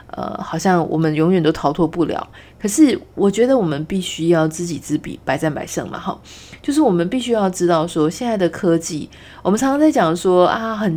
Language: Chinese